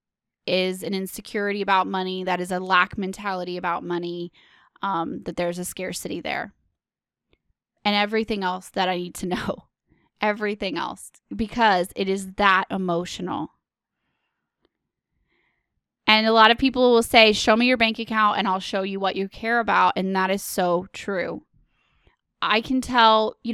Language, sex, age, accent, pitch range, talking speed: English, female, 20-39, American, 195-235 Hz, 160 wpm